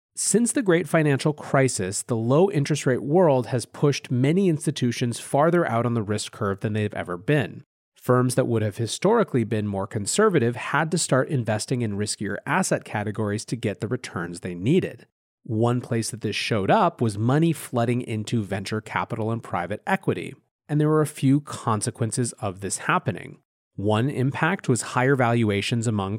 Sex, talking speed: male, 175 wpm